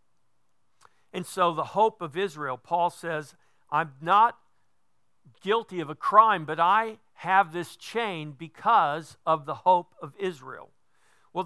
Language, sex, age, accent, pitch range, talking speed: English, male, 50-69, American, 160-195 Hz, 135 wpm